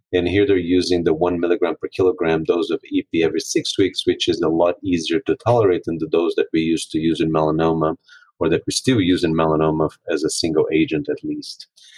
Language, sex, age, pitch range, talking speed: English, male, 30-49, 90-135 Hz, 225 wpm